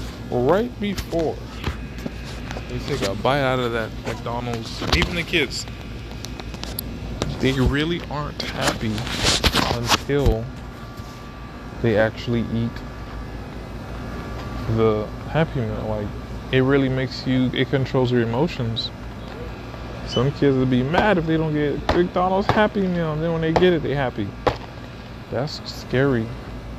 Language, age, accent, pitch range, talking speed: English, 20-39, American, 115-140 Hz, 125 wpm